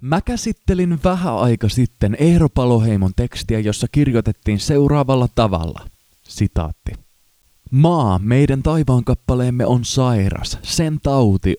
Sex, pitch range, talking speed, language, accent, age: male, 100-135 Hz, 100 wpm, Finnish, native, 20-39